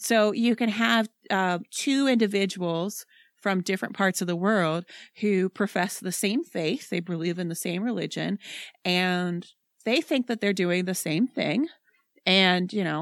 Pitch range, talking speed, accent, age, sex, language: 175-225 Hz, 165 wpm, American, 30-49, female, English